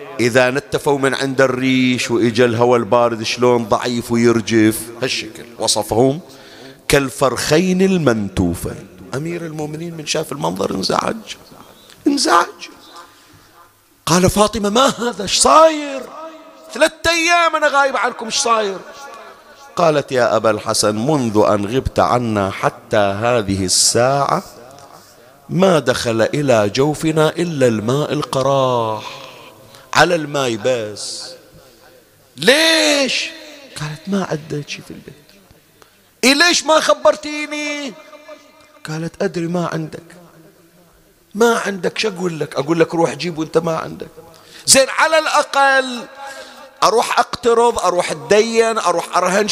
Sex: male